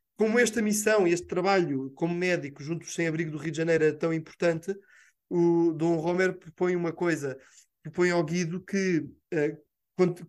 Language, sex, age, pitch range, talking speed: Portuguese, male, 20-39, 160-185 Hz, 170 wpm